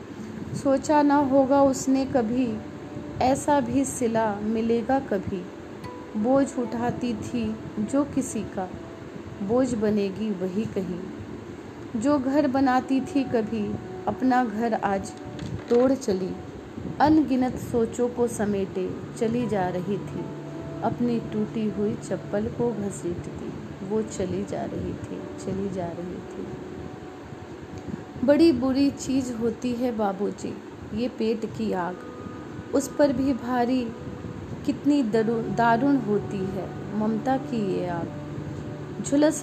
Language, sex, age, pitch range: Hindi, female, 30-49, 210-265 Hz